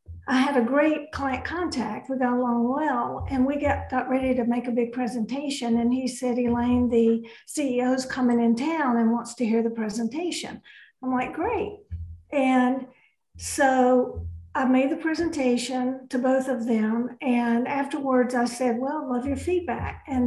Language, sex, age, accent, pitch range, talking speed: English, female, 50-69, American, 245-280 Hz, 170 wpm